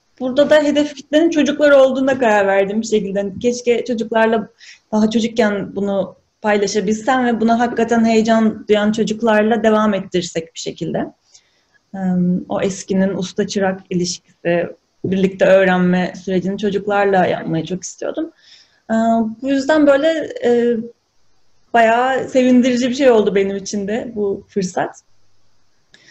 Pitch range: 195-240 Hz